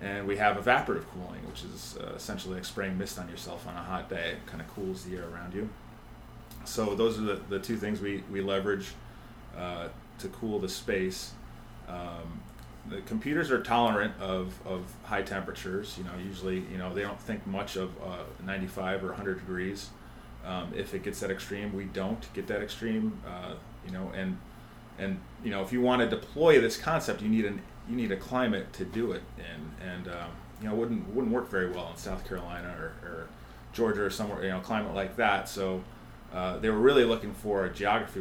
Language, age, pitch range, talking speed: English, 30-49, 90-110 Hz, 205 wpm